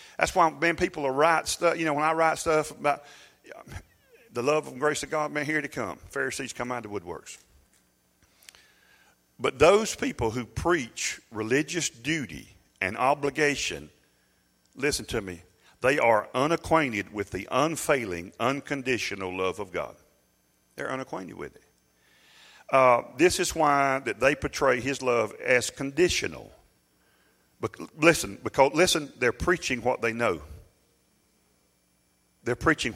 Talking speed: 140 wpm